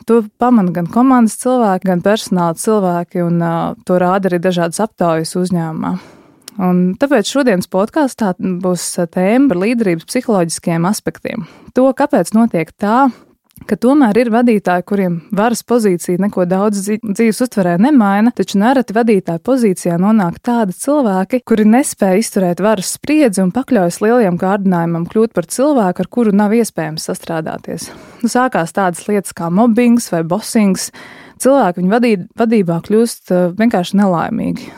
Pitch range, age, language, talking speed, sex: 180-230 Hz, 20-39, English, 135 wpm, female